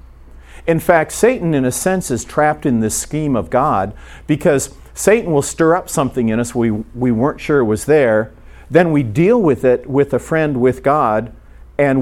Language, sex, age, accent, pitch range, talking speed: English, male, 50-69, American, 110-155 Hz, 195 wpm